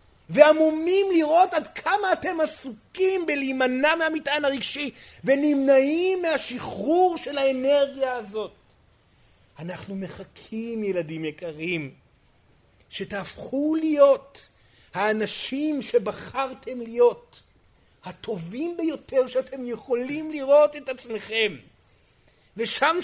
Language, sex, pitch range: Hebrew, male, 195-320 Hz